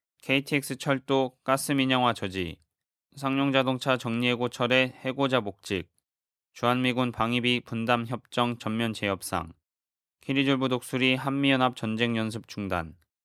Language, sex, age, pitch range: Korean, male, 20-39, 105-135 Hz